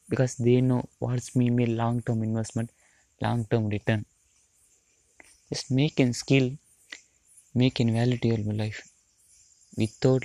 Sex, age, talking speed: male, 20-39, 130 wpm